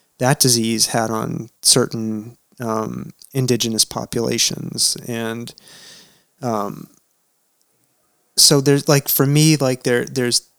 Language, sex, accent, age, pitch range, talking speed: English, male, American, 30-49, 110-125 Hz, 100 wpm